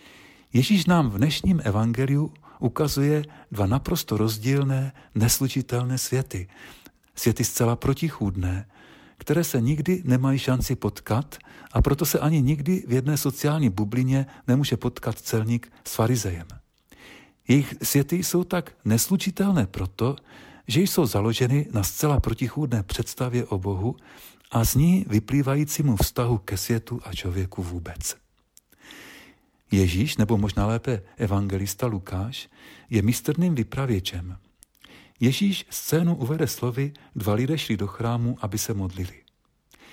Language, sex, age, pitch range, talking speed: Czech, male, 50-69, 110-145 Hz, 120 wpm